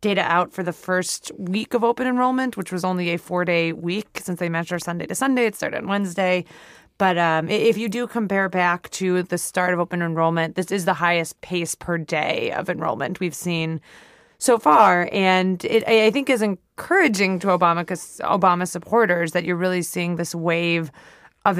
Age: 20-39